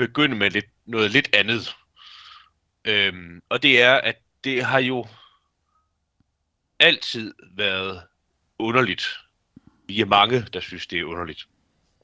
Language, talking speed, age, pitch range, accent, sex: Danish, 125 wpm, 40-59, 85-120 Hz, native, male